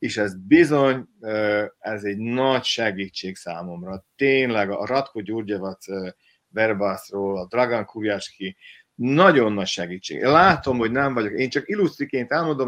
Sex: male